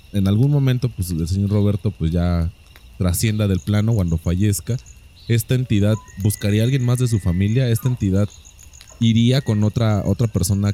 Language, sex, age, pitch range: Spanish, male, 20-39, 95-115 Hz